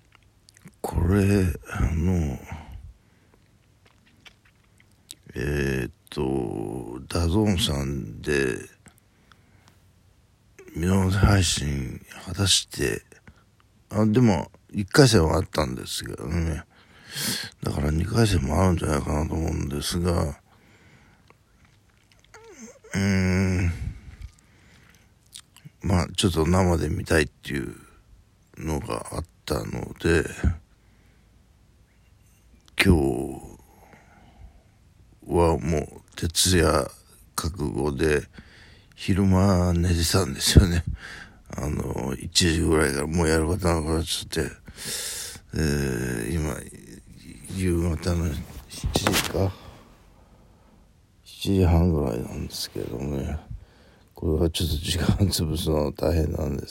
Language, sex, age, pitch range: Japanese, male, 60-79, 80-100 Hz